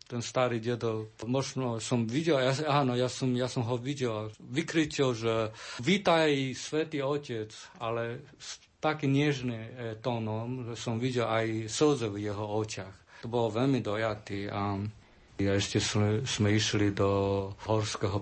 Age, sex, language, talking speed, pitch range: 50-69, male, Slovak, 150 wpm, 105-125 Hz